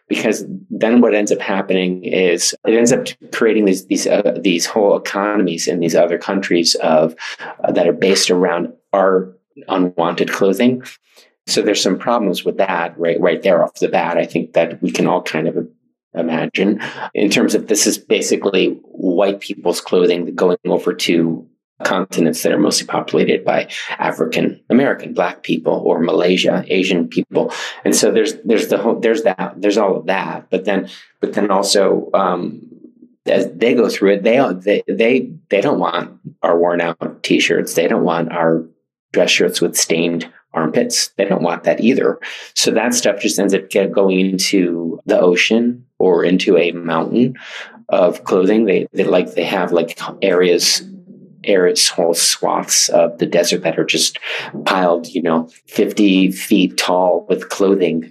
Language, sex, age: English, male, 30-49